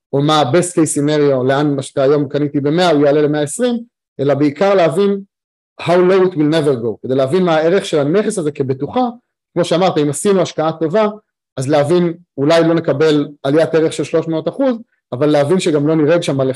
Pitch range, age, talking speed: 140-180 Hz, 30-49, 205 wpm